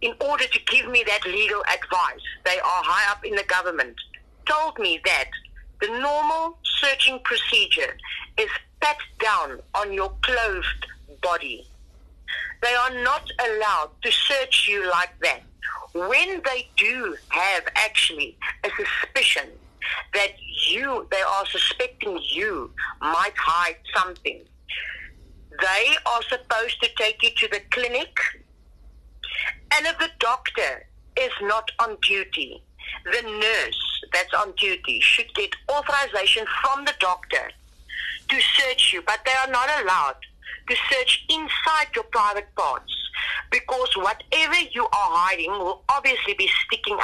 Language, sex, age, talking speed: English, female, 50-69, 135 wpm